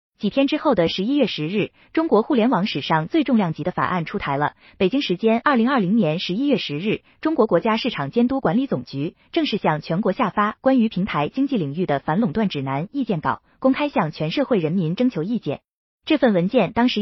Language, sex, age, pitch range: Chinese, female, 20-39, 175-255 Hz